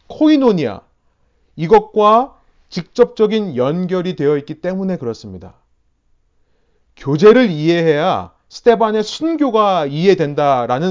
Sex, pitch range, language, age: male, 135-210 Hz, Korean, 30-49